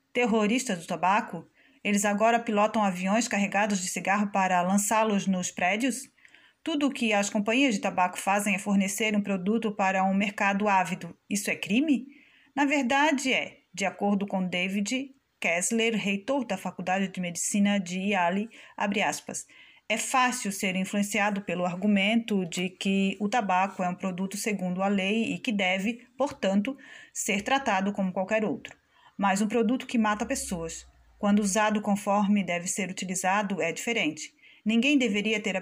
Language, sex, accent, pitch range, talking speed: Portuguese, female, Brazilian, 190-235 Hz, 155 wpm